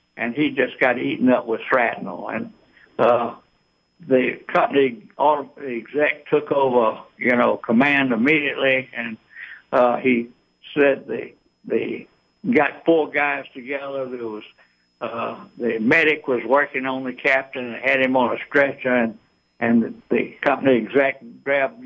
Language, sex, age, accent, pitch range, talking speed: English, male, 60-79, American, 115-140 Hz, 145 wpm